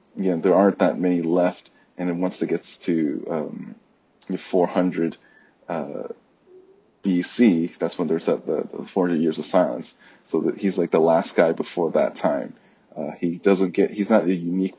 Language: English